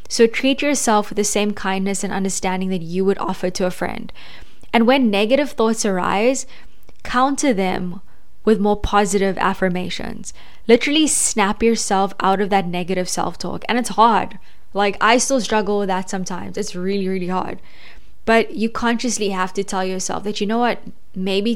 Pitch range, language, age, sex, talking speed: 190-225 Hz, English, 10-29, female, 170 wpm